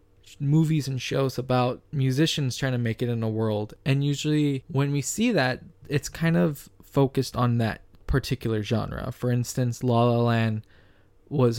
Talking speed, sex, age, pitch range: 165 wpm, male, 20-39, 110-125 Hz